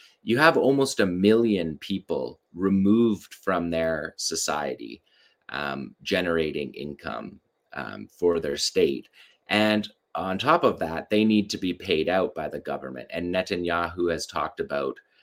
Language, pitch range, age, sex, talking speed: English, 85-110 Hz, 30-49, male, 140 wpm